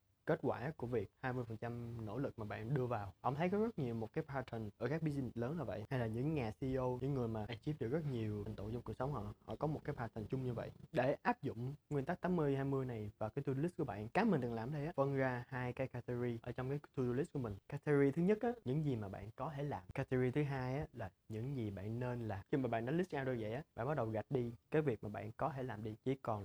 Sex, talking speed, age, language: male, 290 wpm, 20-39, Vietnamese